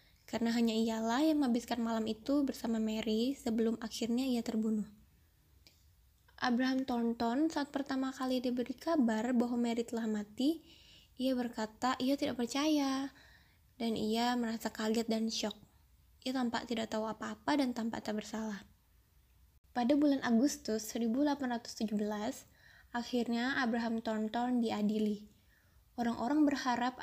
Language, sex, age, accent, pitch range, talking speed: Indonesian, female, 10-29, native, 220-255 Hz, 120 wpm